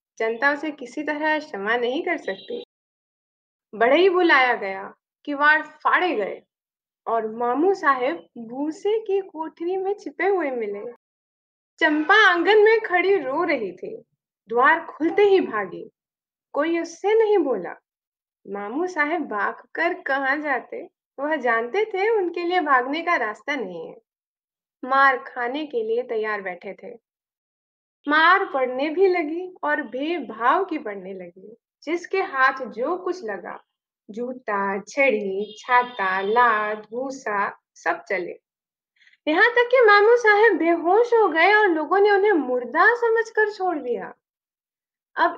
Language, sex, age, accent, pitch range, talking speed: Hindi, female, 20-39, native, 250-385 Hz, 105 wpm